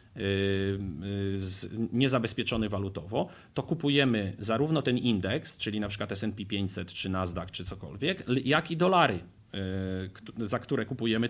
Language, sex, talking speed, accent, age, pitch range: Polish, male, 110 wpm, native, 40-59, 100-130 Hz